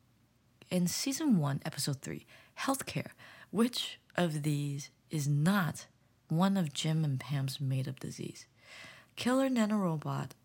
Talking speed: 115 wpm